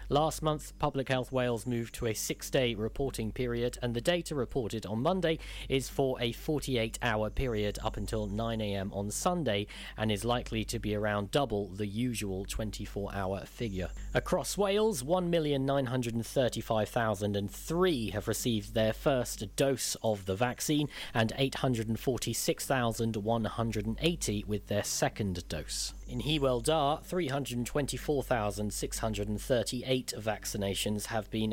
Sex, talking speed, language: male, 115 wpm, English